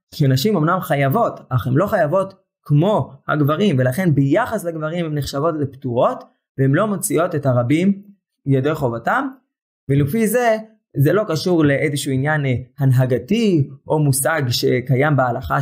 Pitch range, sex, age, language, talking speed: 135-195 Hz, male, 20-39, Hebrew, 130 wpm